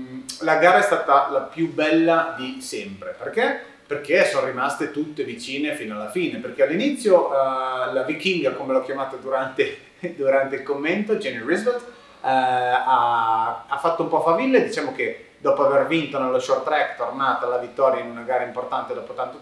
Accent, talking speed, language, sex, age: native, 165 wpm, Italian, male, 30-49